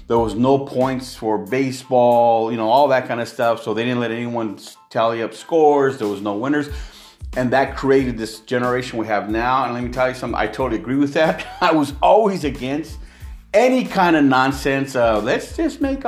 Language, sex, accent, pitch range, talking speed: English, male, American, 125-170 Hz, 210 wpm